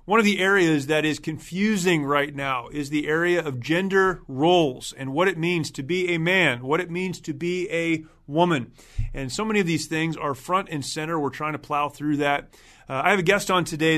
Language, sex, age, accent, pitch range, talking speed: English, male, 30-49, American, 150-180 Hz, 230 wpm